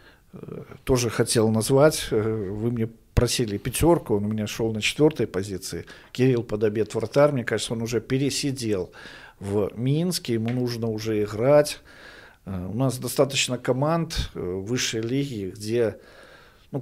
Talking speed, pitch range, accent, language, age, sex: 125 wpm, 105-130 Hz, native, Russian, 50-69, male